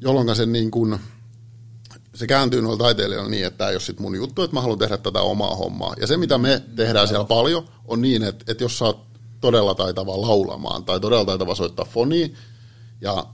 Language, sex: Finnish, male